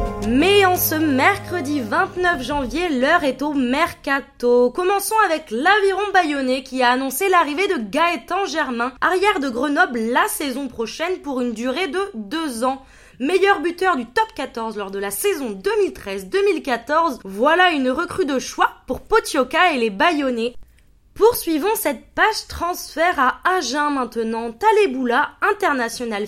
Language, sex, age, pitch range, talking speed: French, female, 20-39, 255-365 Hz, 140 wpm